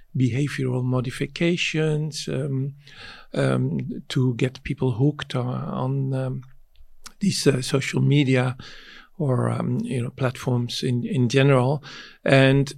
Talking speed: 115 wpm